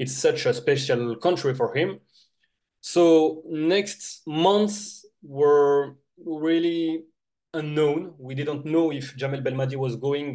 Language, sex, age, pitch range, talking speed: English, male, 30-49, 125-165 Hz, 120 wpm